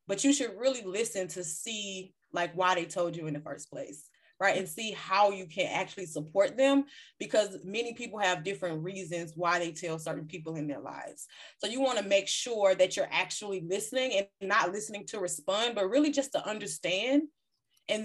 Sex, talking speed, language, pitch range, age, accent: female, 200 wpm, English, 185-235 Hz, 20-39, American